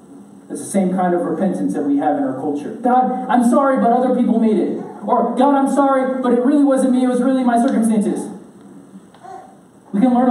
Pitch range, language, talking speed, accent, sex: 220-260 Hz, English, 215 wpm, American, male